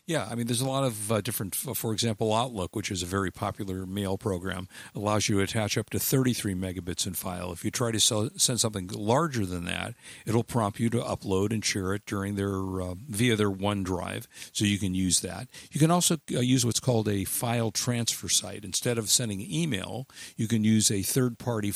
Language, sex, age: English, male, 50-69